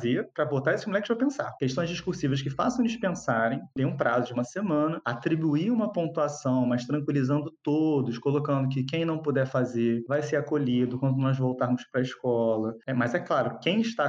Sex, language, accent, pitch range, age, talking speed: male, Portuguese, Brazilian, 130-160 Hz, 20-39, 185 wpm